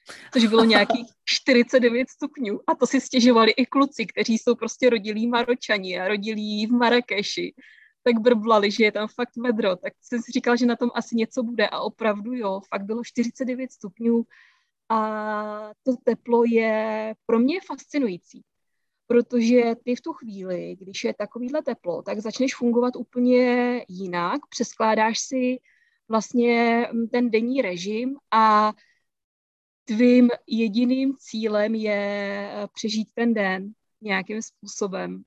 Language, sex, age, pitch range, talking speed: Czech, female, 20-39, 205-245 Hz, 140 wpm